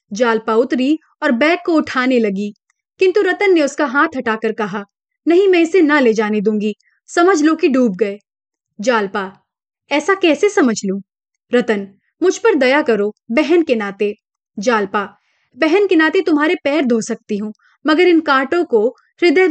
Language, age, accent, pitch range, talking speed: Hindi, 30-49, native, 225-330 Hz, 165 wpm